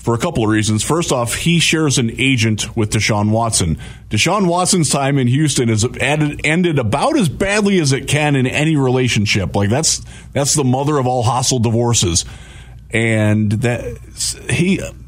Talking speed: 170 wpm